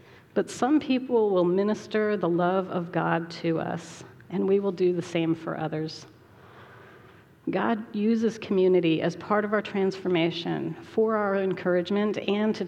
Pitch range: 165-205 Hz